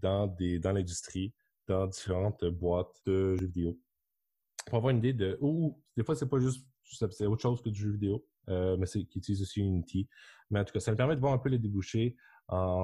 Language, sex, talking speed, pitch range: French, male, 230 wpm, 90-110 Hz